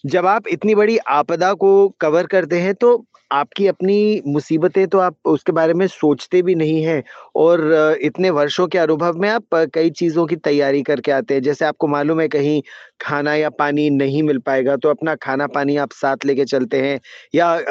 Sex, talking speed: male, 195 wpm